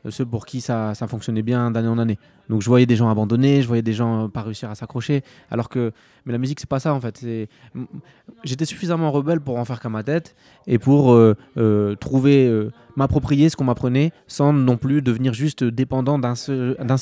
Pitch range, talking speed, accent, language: 115-135 Hz, 225 wpm, French, French